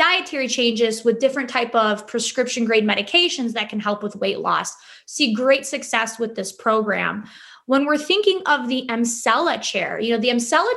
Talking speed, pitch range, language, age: 180 wpm, 225-270 Hz, English, 20-39